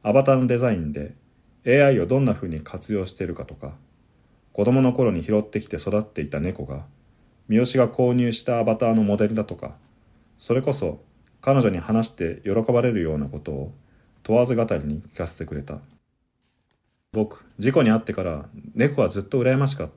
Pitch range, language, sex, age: 80-120 Hz, Japanese, male, 40-59